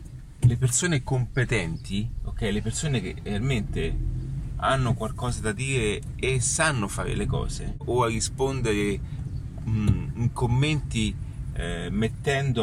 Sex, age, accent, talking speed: male, 30-49, native, 120 wpm